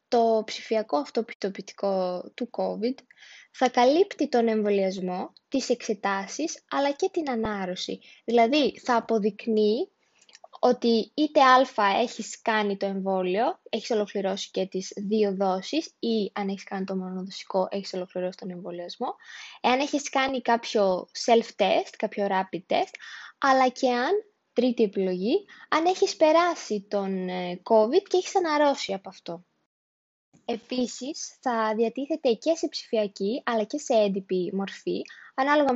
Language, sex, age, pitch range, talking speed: Greek, female, 20-39, 200-285 Hz, 130 wpm